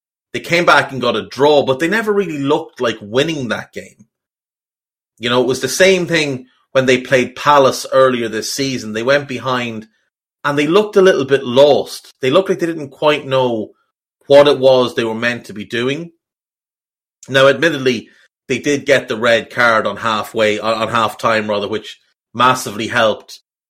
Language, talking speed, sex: English, 185 wpm, male